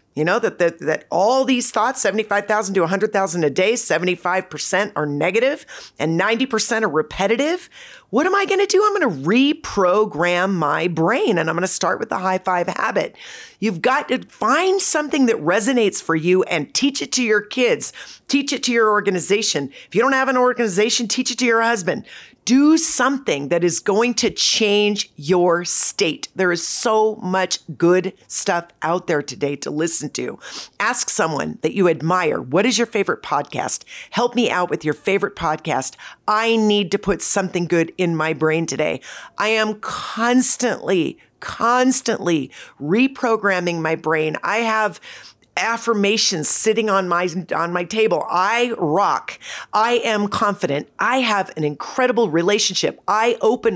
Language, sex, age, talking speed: English, female, 40-59, 165 wpm